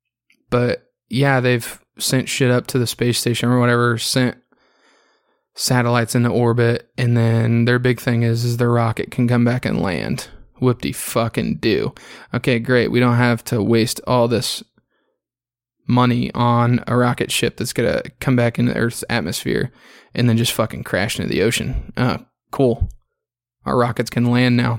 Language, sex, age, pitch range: English, male, 20-39, 120-135 Hz